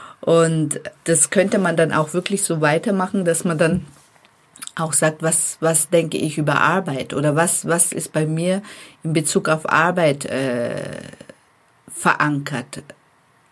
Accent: German